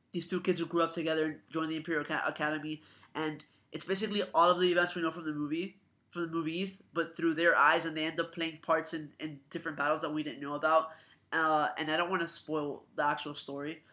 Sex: male